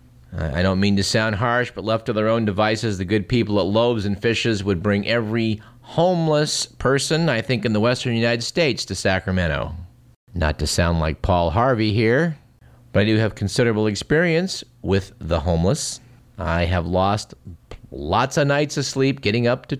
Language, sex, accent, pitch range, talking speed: English, male, American, 95-125 Hz, 180 wpm